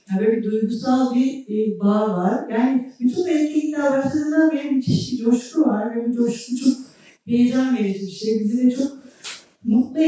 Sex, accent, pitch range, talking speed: female, native, 200-235 Hz, 160 wpm